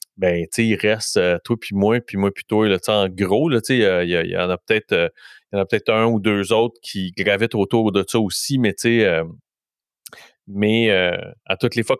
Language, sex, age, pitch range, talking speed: English, male, 30-49, 95-115 Hz, 255 wpm